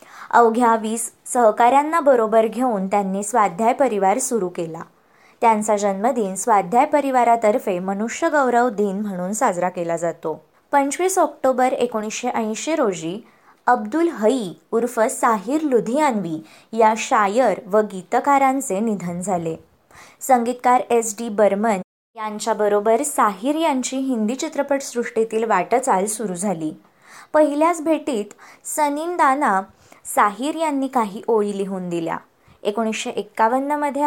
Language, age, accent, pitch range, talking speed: Marathi, 20-39, native, 200-260 Hz, 100 wpm